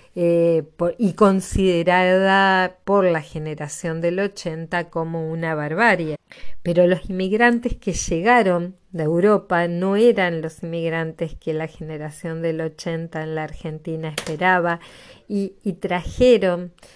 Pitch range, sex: 160-195 Hz, female